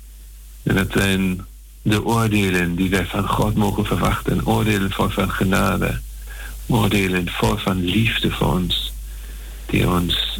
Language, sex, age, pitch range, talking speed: Dutch, male, 50-69, 65-105 Hz, 135 wpm